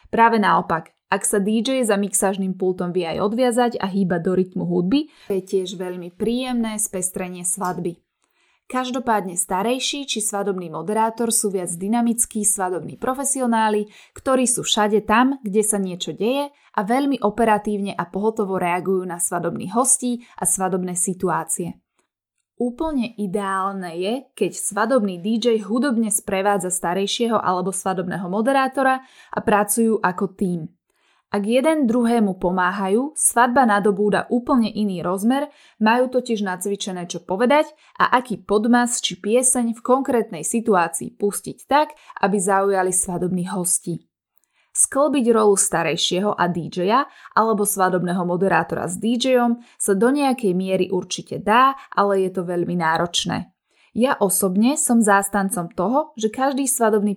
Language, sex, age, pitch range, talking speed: Slovak, female, 20-39, 185-245 Hz, 130 wpm